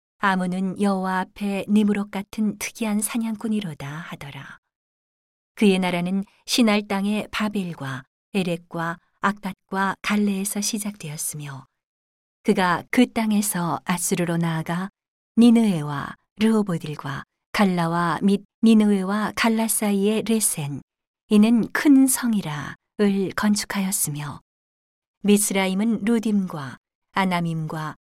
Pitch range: 165-210 Hz